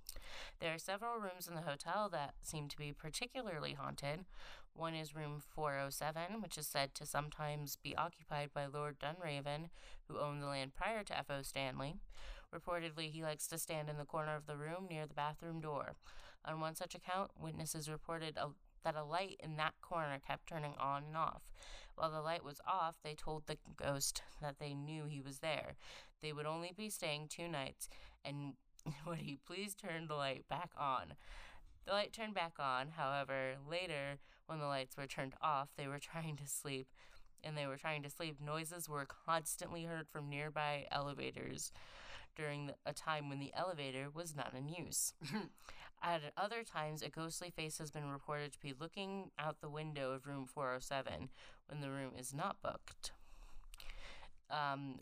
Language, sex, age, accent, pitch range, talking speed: English, female, 20-39, American, 140-165 Hz, 180 wpm